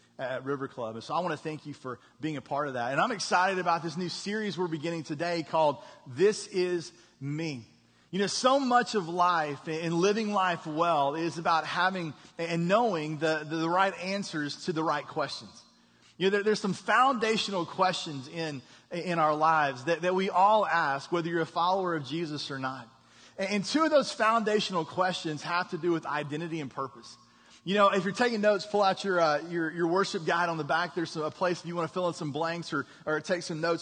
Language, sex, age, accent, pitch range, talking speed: English, male, 30-49, American, 160-205 Hz, 225 wpm